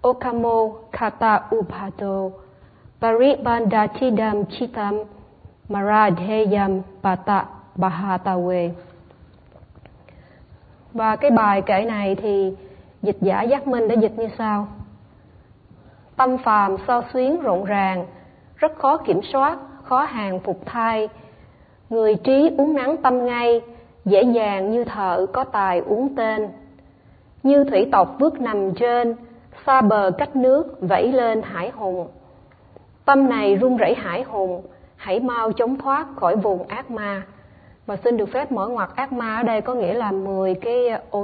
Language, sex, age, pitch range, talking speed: Vietnamese, female, 20-39, 200-255 Hz, 140 wpm